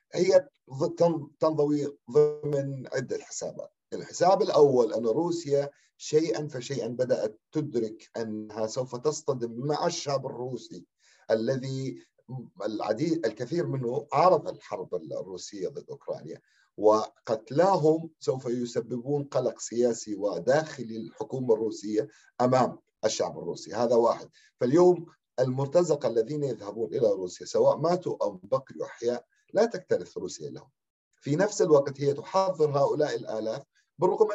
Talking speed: 110 wpm